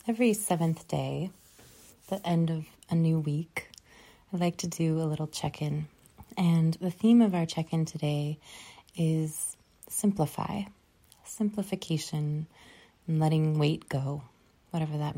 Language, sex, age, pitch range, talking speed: English, female, 30-49, 155-180 Hz, 125 wpm